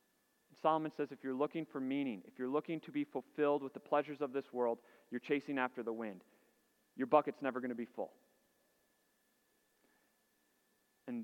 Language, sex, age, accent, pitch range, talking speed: English, male, 30-49, American, 135-180 Hz, 170 wpm